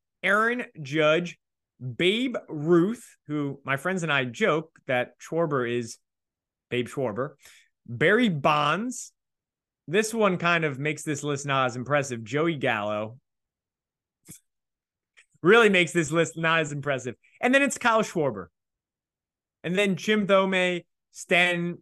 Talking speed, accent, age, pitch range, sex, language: 125 wpm, American, 20-39, 145-200 Hz, male, English